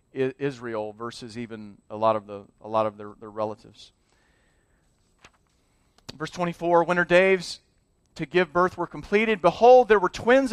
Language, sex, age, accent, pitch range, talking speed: English, male, 40-59, American, 125-175 Hz, 155 wpm